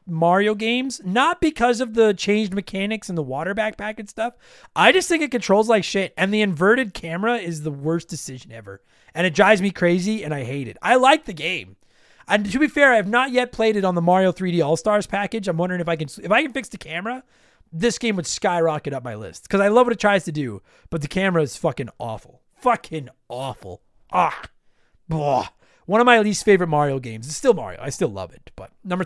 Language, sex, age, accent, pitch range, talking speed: English, male, 30-49, American, 170-225 Hz, 230 wpm